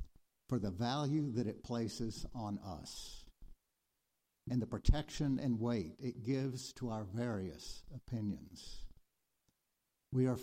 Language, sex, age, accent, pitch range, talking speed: English, male, 60-79, American, 100-130 Hz, 120 wpm